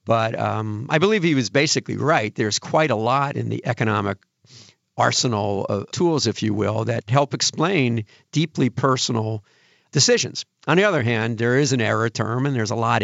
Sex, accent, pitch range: male, American, 110-140 Hz